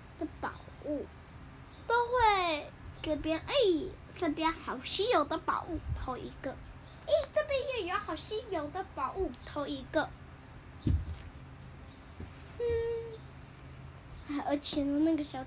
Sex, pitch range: female, 285-385 Hz